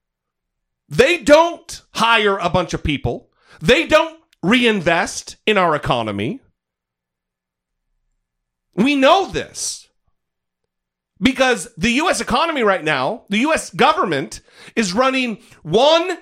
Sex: male